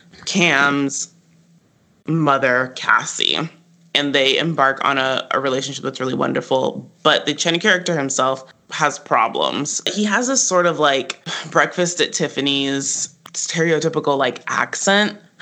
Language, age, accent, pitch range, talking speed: English, 20-39, American, 135-175 Hz, 125 wpm